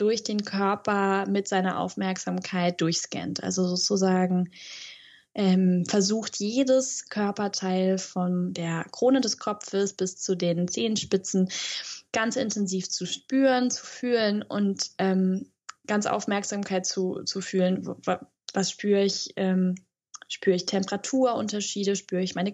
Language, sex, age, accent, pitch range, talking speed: German, female, 10-29, German, 185-210 Hz, 120 wpm